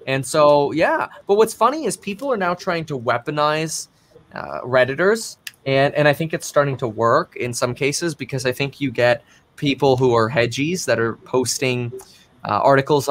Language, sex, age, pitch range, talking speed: English, male, 20-39, 125-170 Hz, 185 wpm